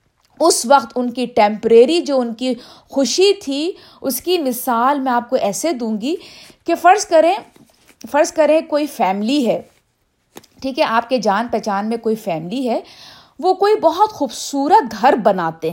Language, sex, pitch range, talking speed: Urdu, female, 220-290 Hz, 165 wpm